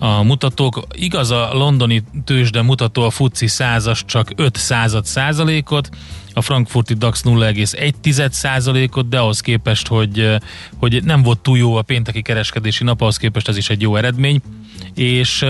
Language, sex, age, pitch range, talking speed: Hungarian, male, 30-49, 110-130 Hz, 150 wpm